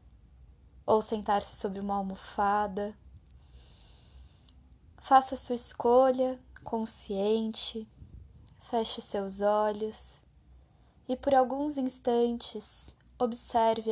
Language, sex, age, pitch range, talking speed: Portuguese, female, 10-29, 200-235 Hz, 75 wpm